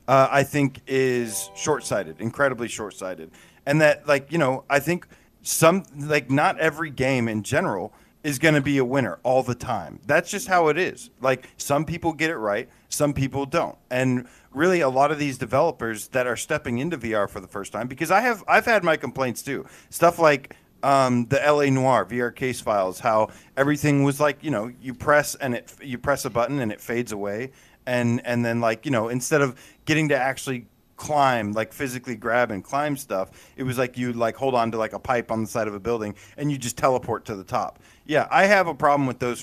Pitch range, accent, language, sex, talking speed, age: 115-150 Hz, American, English, male, 220 wpm, 40-59